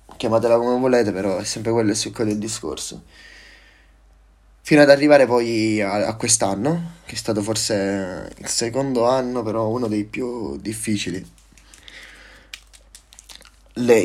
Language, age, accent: Italian, 10-29, native